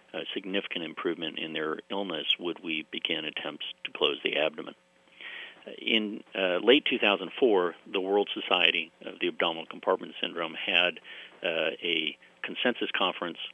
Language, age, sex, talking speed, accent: English, 50-69, male, 135 wpm, American